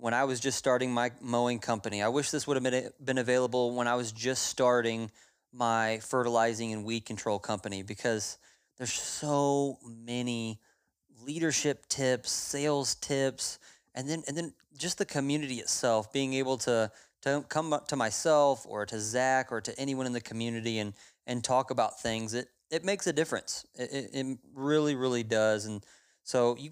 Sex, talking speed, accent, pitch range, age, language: male, 175 wpm, American, 115-135 Hz, 30-49, English